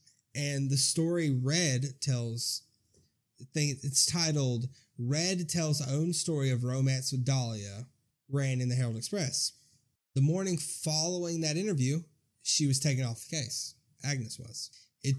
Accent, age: American, 20-39